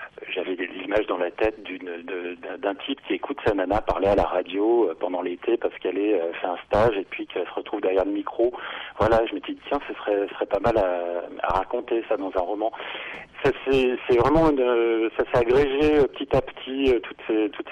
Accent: French